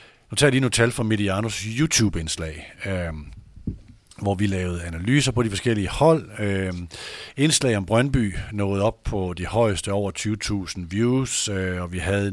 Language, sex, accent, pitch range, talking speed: Danish, male, native, 95-115 Hz, 165 wpm